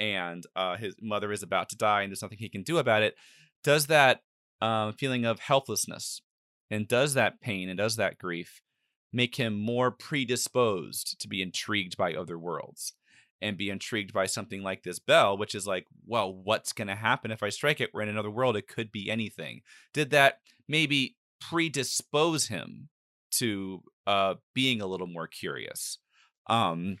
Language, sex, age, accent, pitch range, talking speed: English, male, 30-49, American, 100-125 Hz, 180 wpm